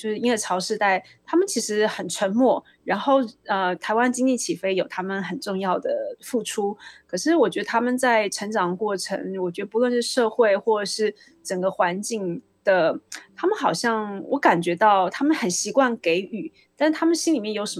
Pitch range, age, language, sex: 205-285 Hz, 20-39, Chinese, female